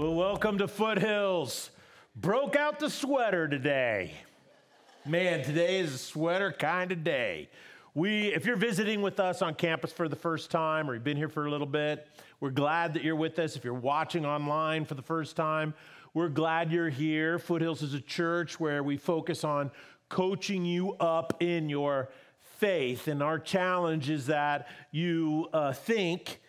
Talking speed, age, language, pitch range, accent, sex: 175 wpm, 40-59, English, 150-195 Hz, American, male